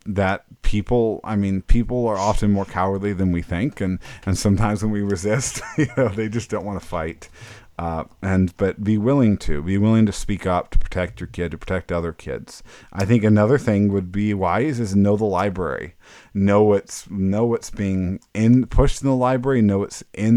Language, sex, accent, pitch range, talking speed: English, male, American, 90-110 Hz, 205 wpm